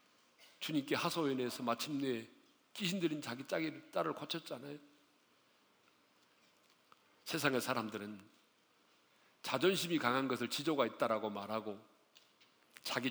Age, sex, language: 40-59, male, Korean